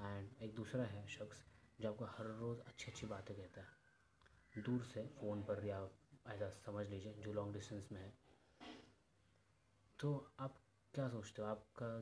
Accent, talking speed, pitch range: native, 170 wpm, 100-110 Hz